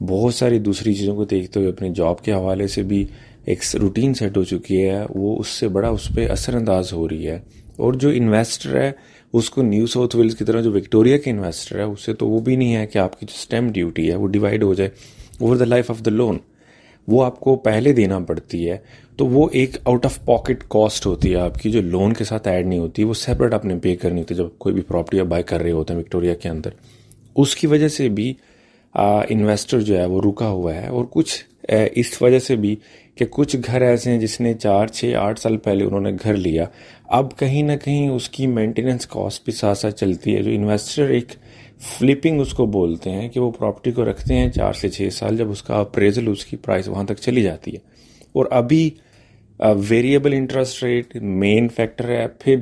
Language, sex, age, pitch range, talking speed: Urdu, male, 30-49, 100-125 Hz, 205 wpm